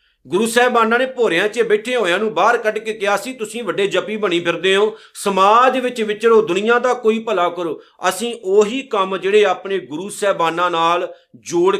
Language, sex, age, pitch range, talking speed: Punjabi, male, 50-69, 175-225 Hz, 185 wpm